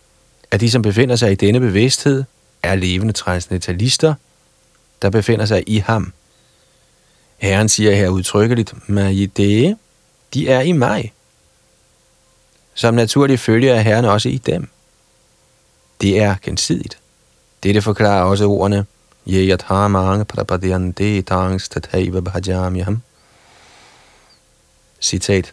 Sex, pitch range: male, 95-115 Hz